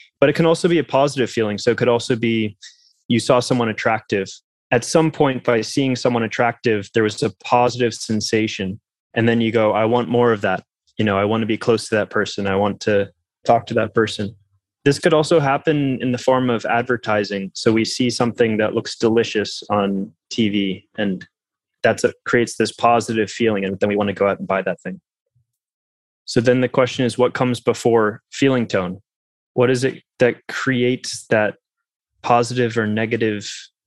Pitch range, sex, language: 110-130 Hz, male, English